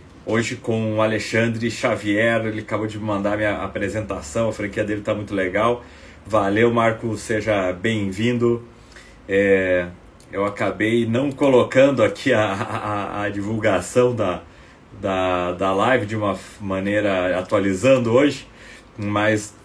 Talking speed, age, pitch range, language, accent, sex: 130 wpm, 30-49, 95-115 Hz, Portuguese, Brazilian, male